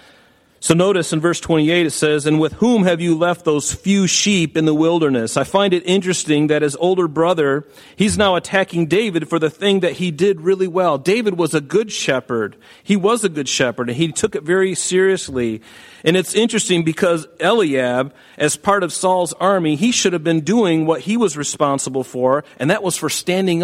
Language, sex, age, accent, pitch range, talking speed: English, male, 40-59, American, 130-190 Hz, 205 wpm